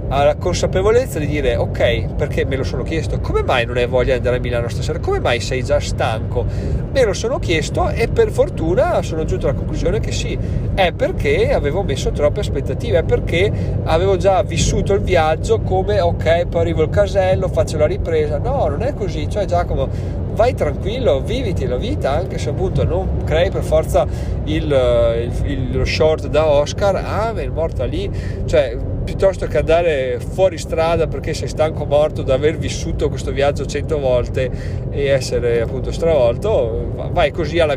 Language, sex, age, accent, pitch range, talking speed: Italian, male, 40-59, native, 105-140 Hz, 185 wpm